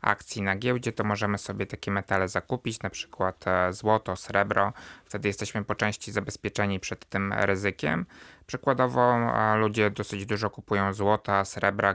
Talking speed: 140 wpm